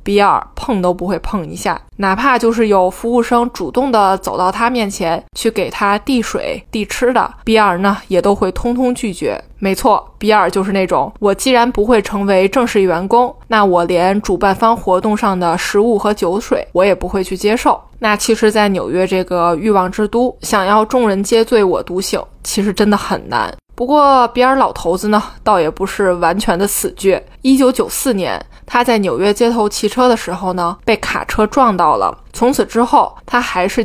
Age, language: 20-39, Chinese